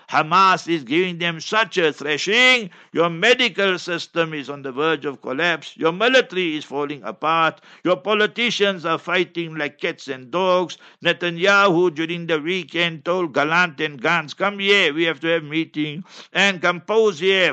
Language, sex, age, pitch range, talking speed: English, male, 60-79, 155-190 Hz, 170 wpm